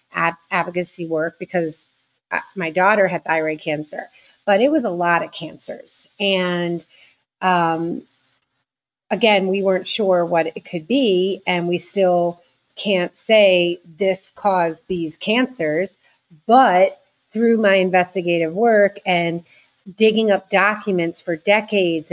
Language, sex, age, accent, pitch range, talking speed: English, female, 30-49, American, 175-205 Hz, 125 wpm